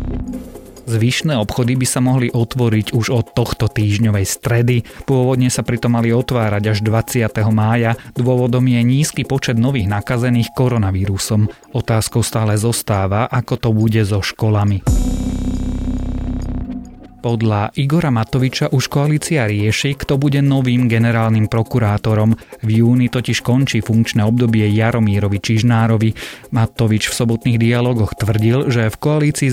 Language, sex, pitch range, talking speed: Slovak, male, 105-125 Hz, 125 wpm